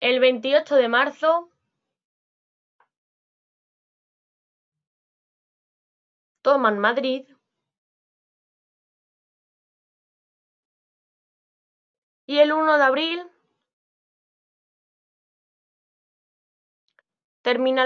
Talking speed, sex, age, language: 40 wpm, female, 20-39, Spanish